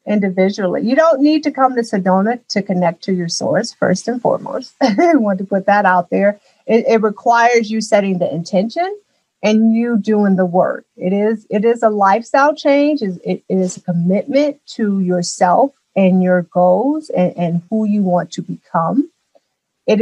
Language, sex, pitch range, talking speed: English, female, 180-220 Hz, 175 wpm